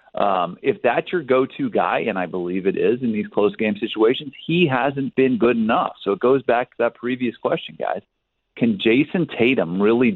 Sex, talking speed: male, 200 wpm